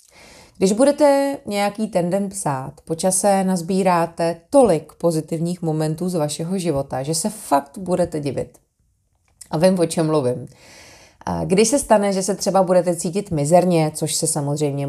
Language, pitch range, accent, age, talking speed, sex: Czech, 150-195 Hz, native, 30-49, 150 wpm, female